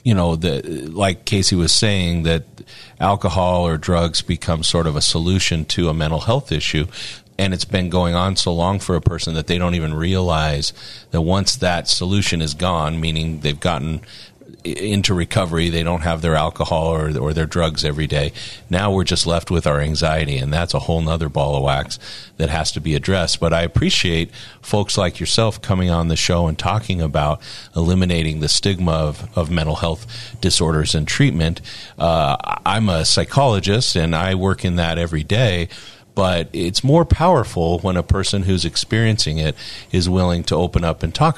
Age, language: 40-59, English